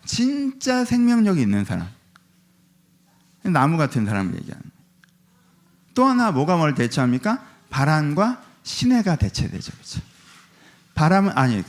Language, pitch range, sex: Korean, 155-215 Hz, male